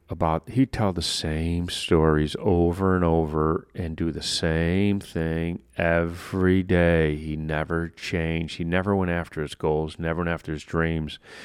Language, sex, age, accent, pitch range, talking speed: English, male, 40-59, American, 80-105 Hz, 155 wpm